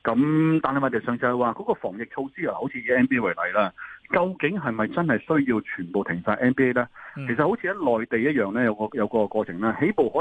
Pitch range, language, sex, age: 105-150 Hz, Chinese, male, 30-49